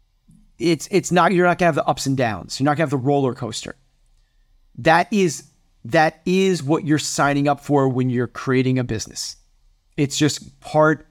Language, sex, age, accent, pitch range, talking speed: English, male, 30-49, American, 125-155 Hz, 200 wpm